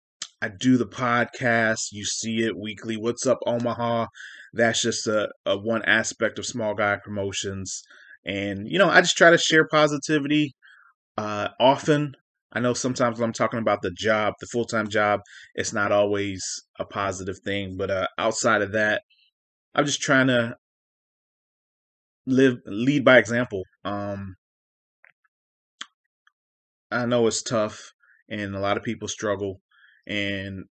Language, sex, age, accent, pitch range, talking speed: English, male, 20-39, American, 100-120 Hz, 145 wpm